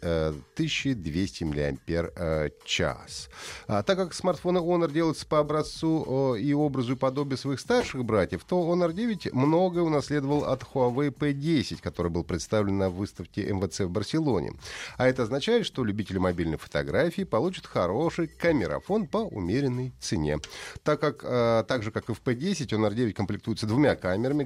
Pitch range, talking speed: 100-155 Hz, 140 wpm